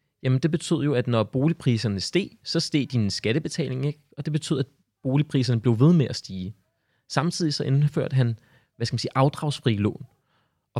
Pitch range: 115-140 Hz